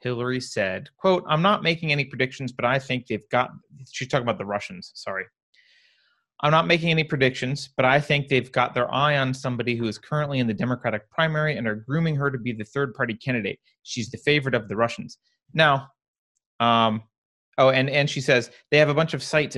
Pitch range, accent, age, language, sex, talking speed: 115-150 Hz, American, 30-49, English, male, 210 wpm